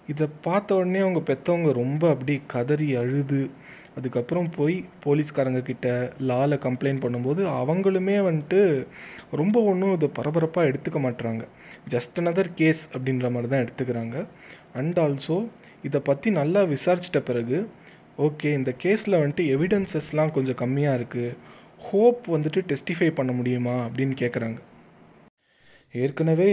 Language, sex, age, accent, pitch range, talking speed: Tamil, male, 20-39, native, 130-165 Hz, 120 wpm